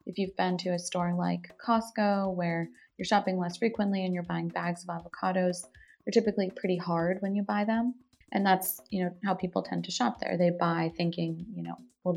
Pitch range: 175-200 Hz